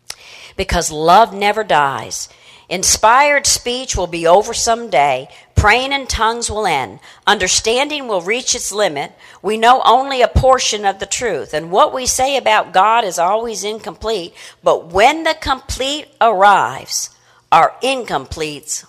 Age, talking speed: 50-69, 145 wpm